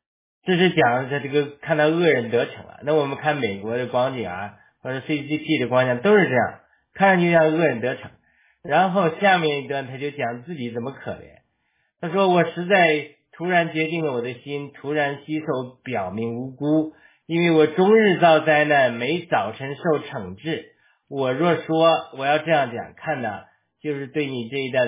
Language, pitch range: Chinese, 120-155 Hz